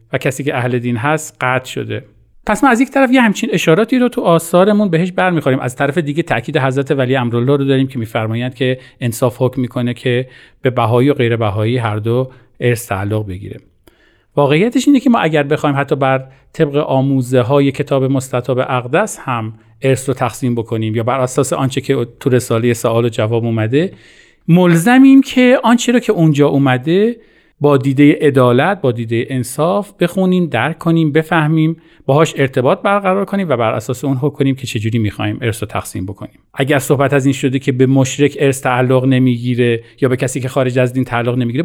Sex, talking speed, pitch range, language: male, 180 wpm, 125-160 Hz, Persian